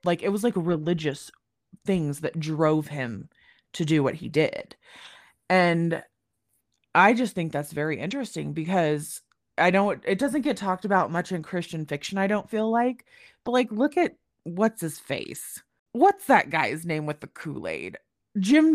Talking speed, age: 165 wpm, 20-39